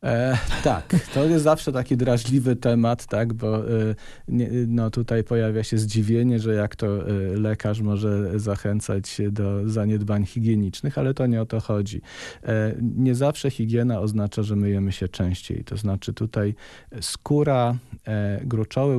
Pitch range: 110-130 Hz